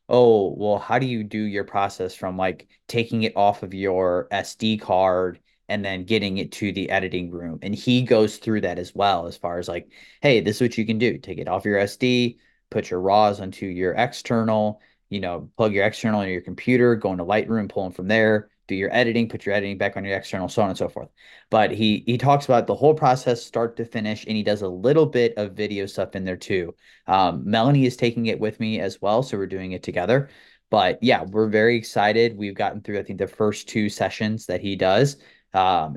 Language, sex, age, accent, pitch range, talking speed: English, male, 30-49, American, 95-110 Hz, 230 wpm